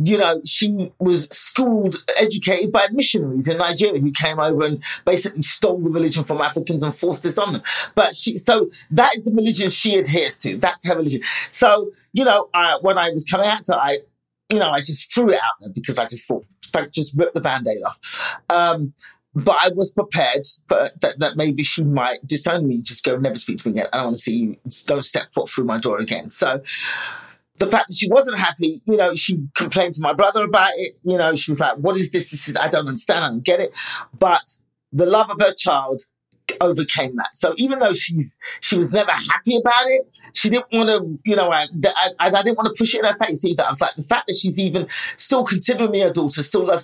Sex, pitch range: male, 150-205 Hz